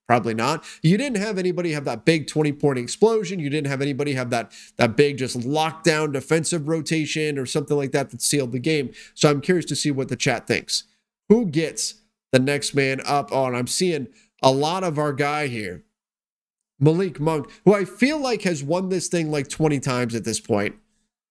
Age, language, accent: 30-49, English, American